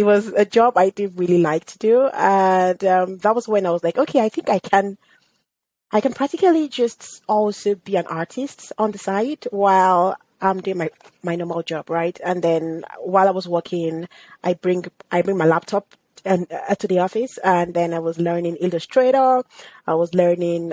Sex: female